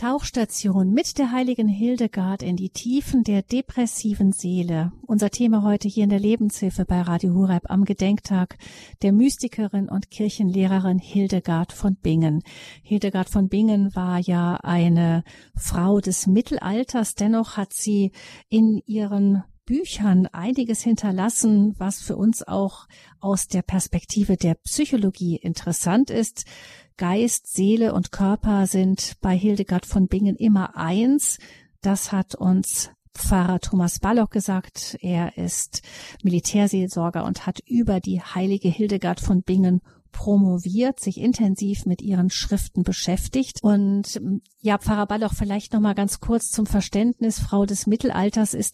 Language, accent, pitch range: German, German, 185-215 Hz